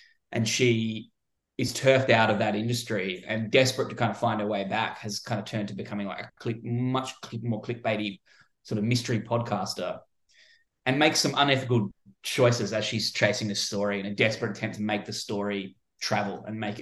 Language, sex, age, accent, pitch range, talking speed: English, male, 20-39, Australian, 105-130 Hz, 195 wpm